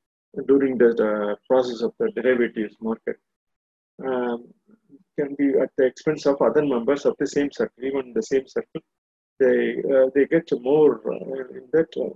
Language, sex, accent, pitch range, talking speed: Tamil, male, native, 120-155 Hz, 170 wpm